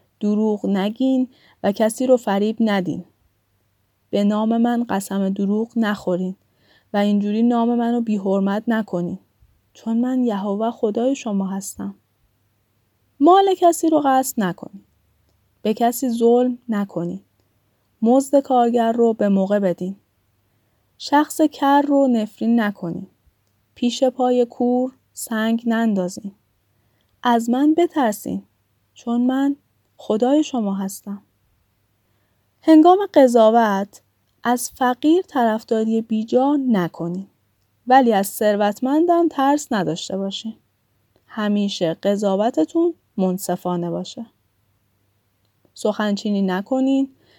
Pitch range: 180-255 Hz